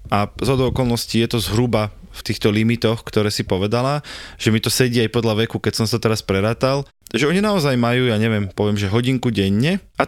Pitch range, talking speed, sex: 110-130 Hz, 215 wpm, male